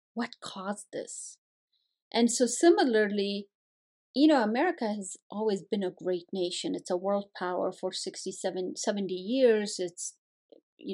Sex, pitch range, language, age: female, 190-250 Hz, English, 30-49